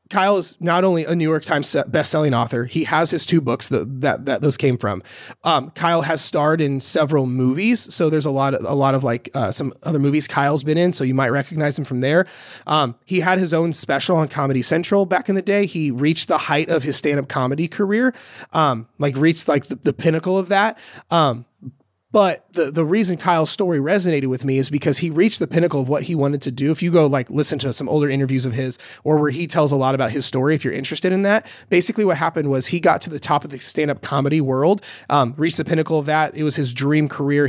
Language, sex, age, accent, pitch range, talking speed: English, male, 30-49, American, 135-165 Hz, 245 wpm